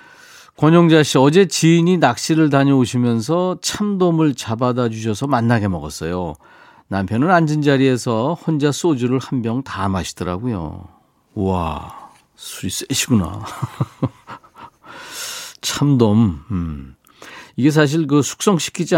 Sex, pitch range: male, 105-155 Hz